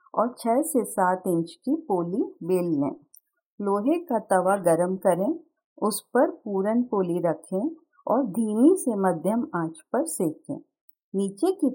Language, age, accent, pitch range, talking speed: Hindi, 50-69, native, 175-260 Hz, 145 wpm